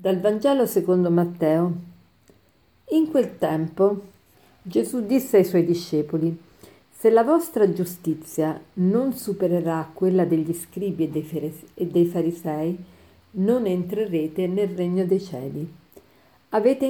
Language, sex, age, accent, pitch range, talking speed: Italian, female, 50-69, native, 165-200 Hz, 110 wpm